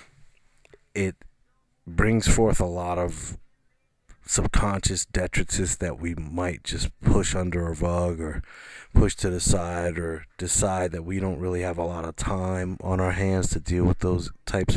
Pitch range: 85-100 Hz